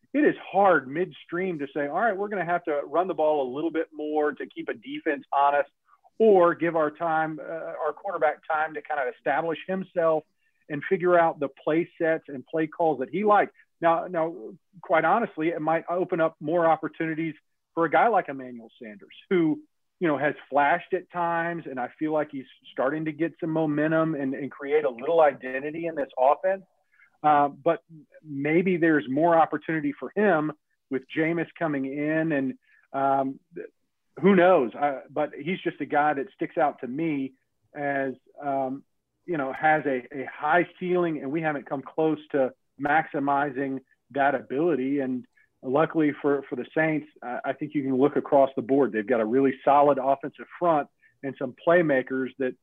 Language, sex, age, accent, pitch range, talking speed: English, male, 40-59, American, 140-170 Hz, 185 wpm